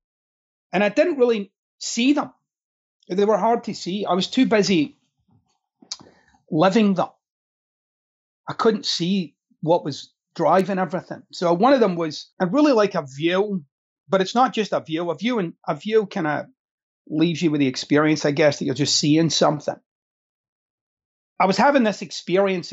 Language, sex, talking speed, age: English, male, 165 wpm, 30-49